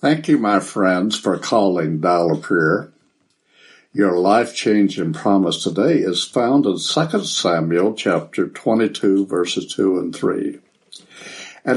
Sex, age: male, 60-79